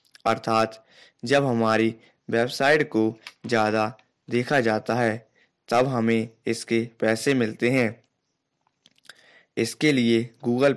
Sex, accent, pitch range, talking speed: male, native, 110-120 Hz, 100 wpm